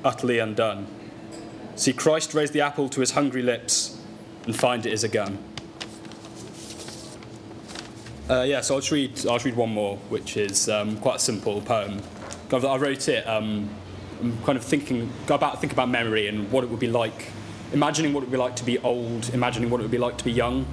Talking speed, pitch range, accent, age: 210 wpm, 105-130 Hz, British, 10-29